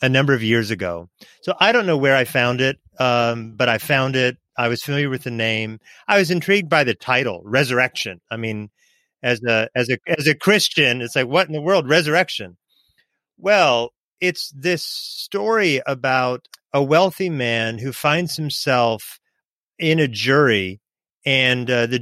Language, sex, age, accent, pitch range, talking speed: English, male, 30-49, American, 120-160 Hz, 175 wpm